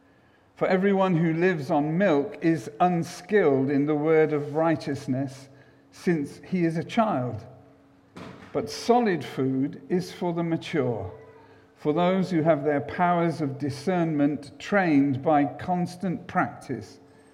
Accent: British